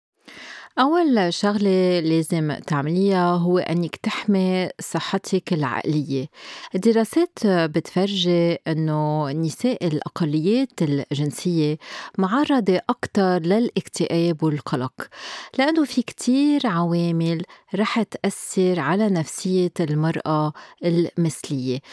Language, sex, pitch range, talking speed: Arabic, female, 160-200 Hz, 80 wpm